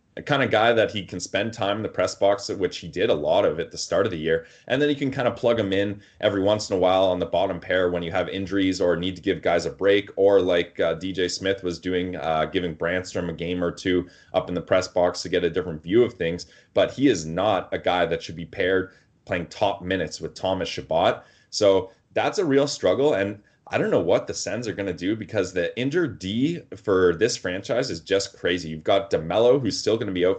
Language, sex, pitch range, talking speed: English, male, 90-120 Hz, 260 wpm